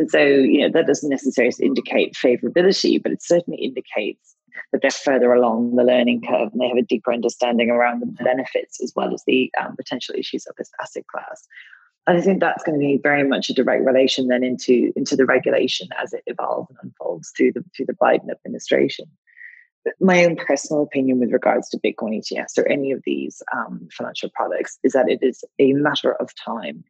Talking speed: 205 wpm